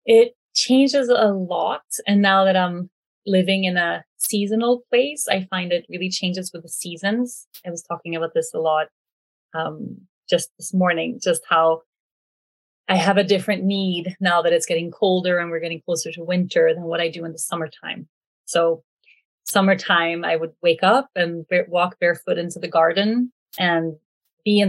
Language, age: German, 30-49